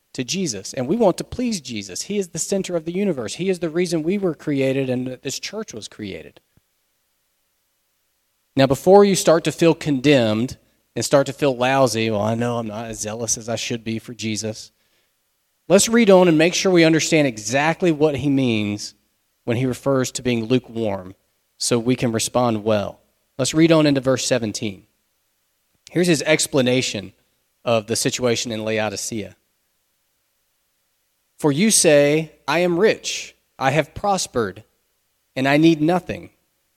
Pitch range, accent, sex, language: 115-160 Hz, American, male, English